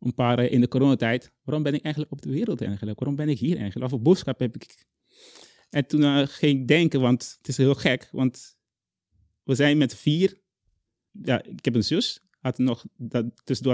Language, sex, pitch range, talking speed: Dutch, male, 120-140 Hz, 205 wpm